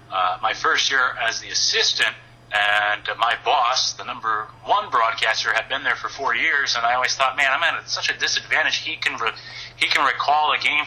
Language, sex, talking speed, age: English, male, 215 wpm, 30-49